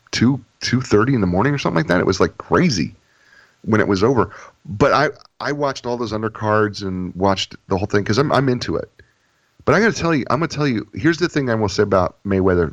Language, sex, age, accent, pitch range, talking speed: English, male, 40-59, American, 90-115 Hz, 255 wpm